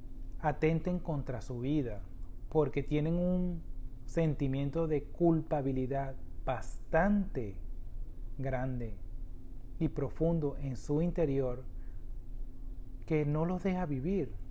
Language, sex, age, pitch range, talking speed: Spanish, male, 40-59, 130-175 Hz, 90 wpm